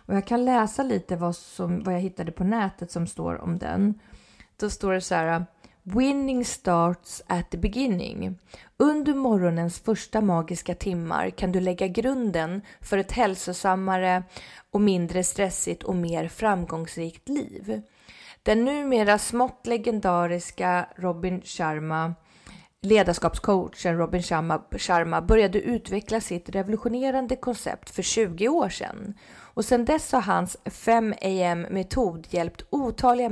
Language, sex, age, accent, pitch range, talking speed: English, female, 30-49, Swedish, 175-220 Hz, 120 wpm